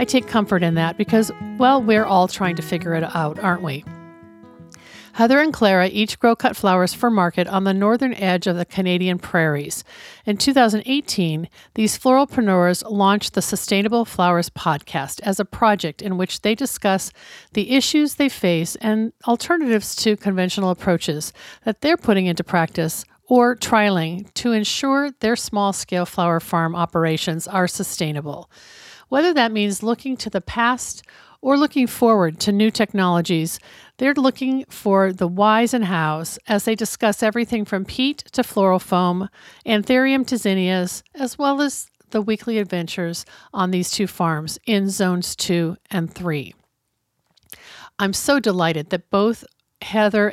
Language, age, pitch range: English, 50-69, 175-230 Hz